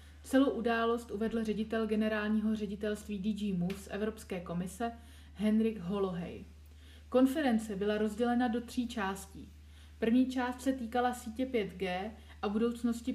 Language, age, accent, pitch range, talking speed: Czech, 30-49, native, 195-235 Hz, 125 wpm